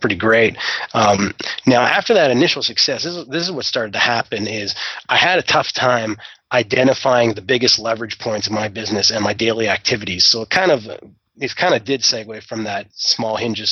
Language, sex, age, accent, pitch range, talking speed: English, male, 30-49, American, 110-125 Hz, 195 wpm